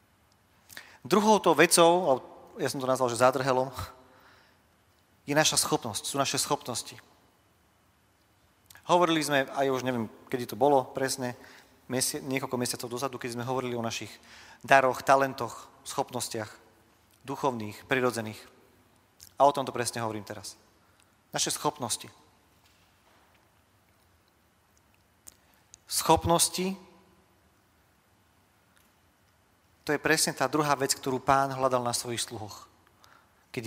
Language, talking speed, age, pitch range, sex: Slovak, 110 wpm, 40-59, 100-140 Hz, male